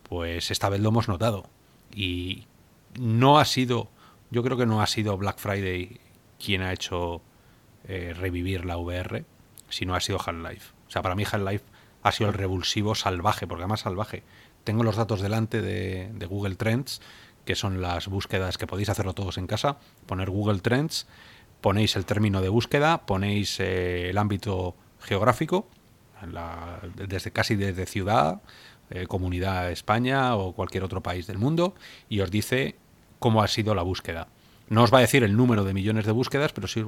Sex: male